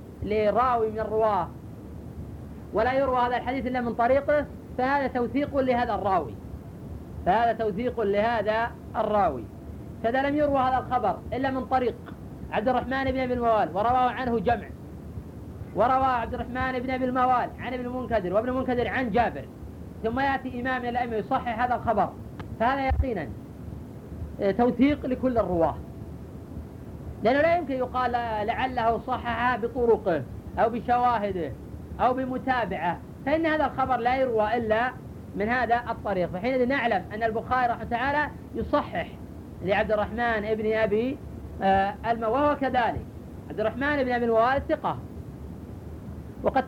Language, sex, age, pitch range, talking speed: Arabic, female, 40-59, 225-260 Hz, 130 wpm